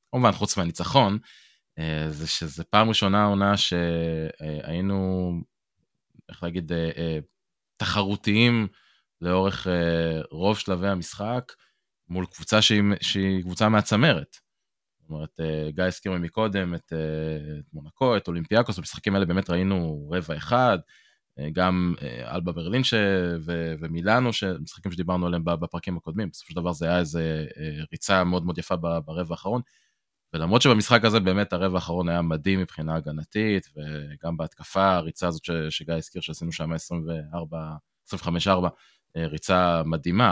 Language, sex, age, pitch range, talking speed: Hebrew, male, 20-39, 80-100 Hz, 120 wpm